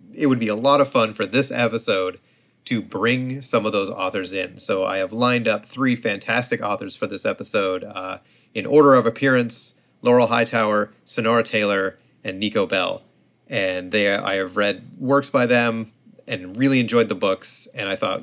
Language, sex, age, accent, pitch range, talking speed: English, male, 30-49, American, 110-140 Hz, 185 wpm